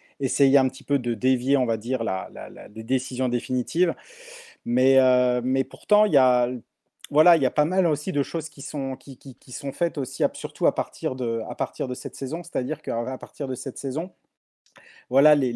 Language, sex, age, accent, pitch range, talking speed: French, male, 30-49, French, 120-145 Hz, 230 wpm